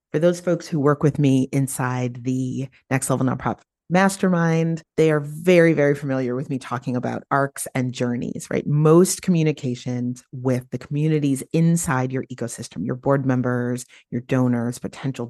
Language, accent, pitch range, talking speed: English, American, 125-160 Hz, 155 wpm